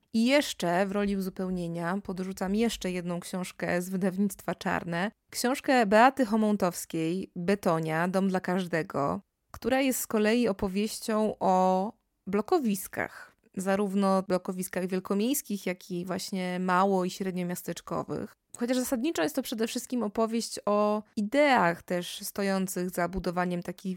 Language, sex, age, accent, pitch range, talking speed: Polish, female, 20-39, native, 180-215 Hz, 125 wpm